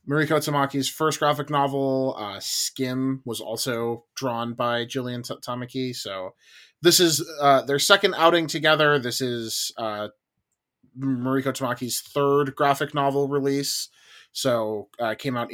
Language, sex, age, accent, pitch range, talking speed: English, male, 20-39, American, 110-140 Hz, 135 wpm